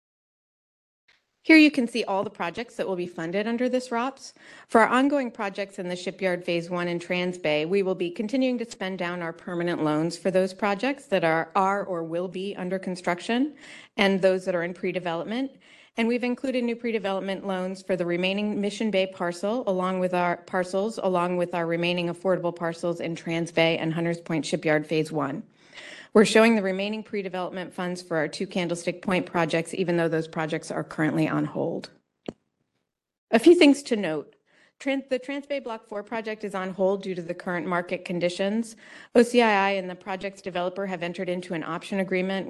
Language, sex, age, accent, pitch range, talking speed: English, female, 30-49, American, 170-200 Hz, 195 wpm